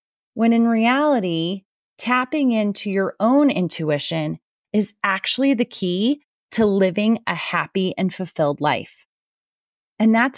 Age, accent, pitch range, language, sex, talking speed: 30-49, American, 175-225 Hz, English, female, 120 wpm